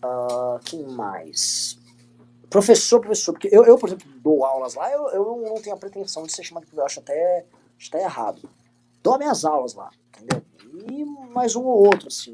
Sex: male